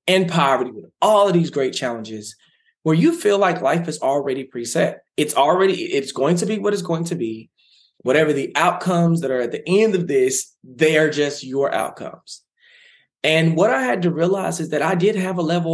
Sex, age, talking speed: male, 20-39, 205 wpm